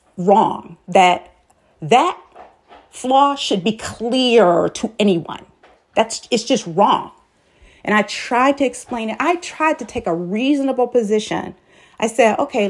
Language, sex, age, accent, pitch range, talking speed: English, female, 40-59, American, 220-315 Hz, 135 wpm